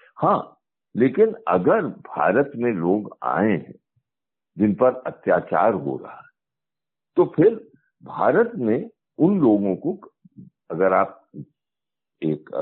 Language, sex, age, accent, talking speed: Hindi, male, 60-79, native, 115 wpm